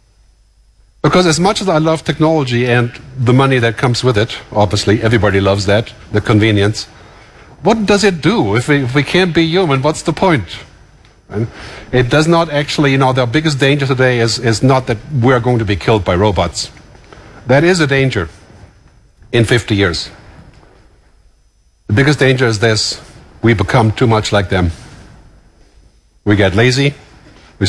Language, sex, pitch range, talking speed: English, male, 105-150 Hz, 170 wpm